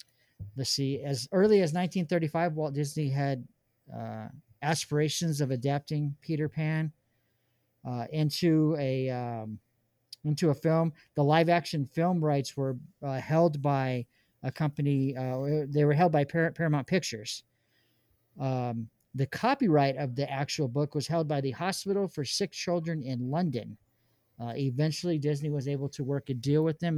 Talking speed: 150 wpm